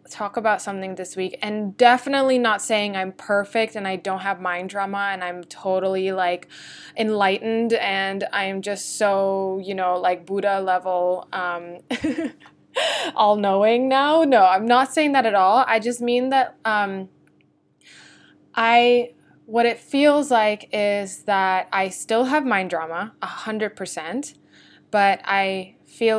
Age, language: 20-39, English